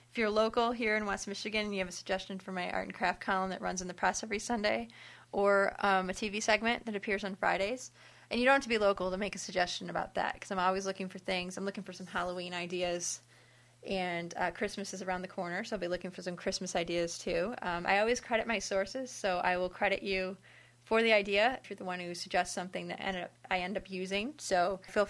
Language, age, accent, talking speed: English, 20-39, American, 245 wpm